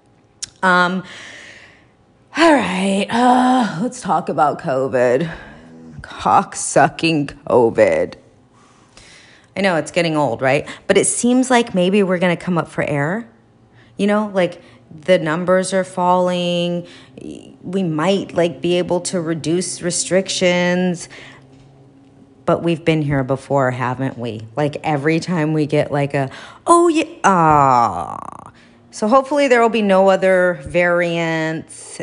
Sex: female